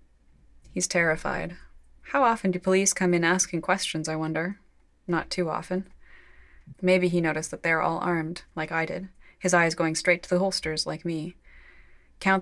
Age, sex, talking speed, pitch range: 20-39, female, 170 wpm, 155-185 Hz